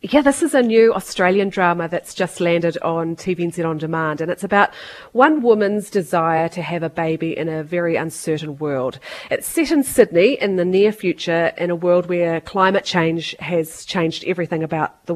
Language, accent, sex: English, Australian, female